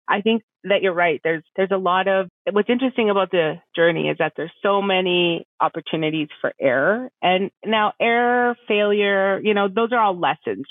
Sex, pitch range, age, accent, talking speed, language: female, 170-210 Hz, 30-49, American, 185 wpm, English